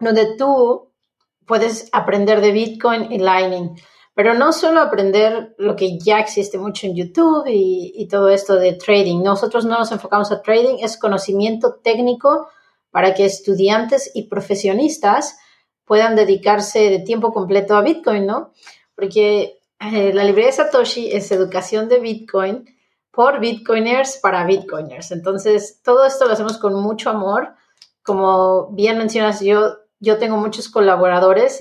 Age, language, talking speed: 30-49, Spanish, 150 wpm